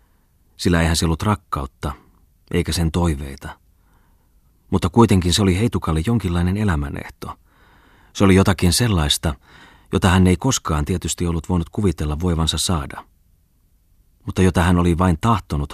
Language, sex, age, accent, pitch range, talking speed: Finnish, male, 30-49, native, 80-95 Hz, 135 wpm